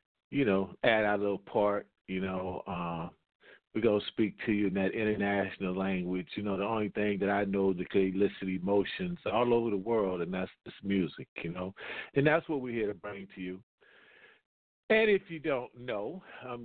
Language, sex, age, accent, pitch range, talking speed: English, male, 40-59, American, 95-115 Hz, 200 wpm